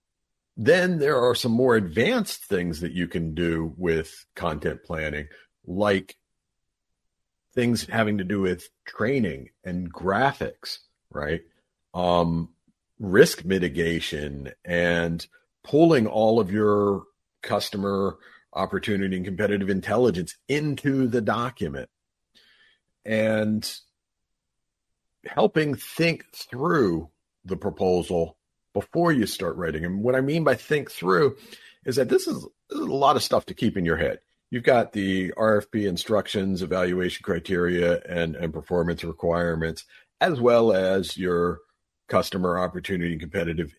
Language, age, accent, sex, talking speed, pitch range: English, 50-69, American, male, 120 wpm, 85-115 Hz